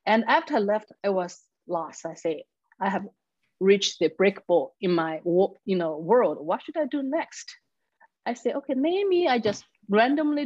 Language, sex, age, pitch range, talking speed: English, female, 30-49, 185-275 Hz, 185 wpm